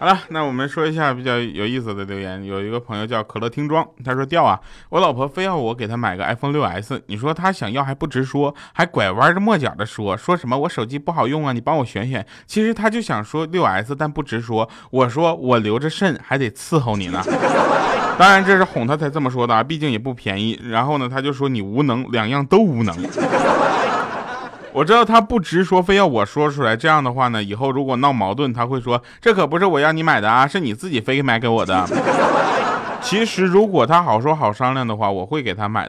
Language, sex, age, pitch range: Chinese, male, 20-39, 115-155 Hz